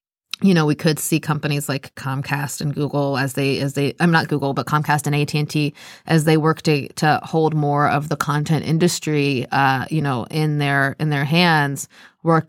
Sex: female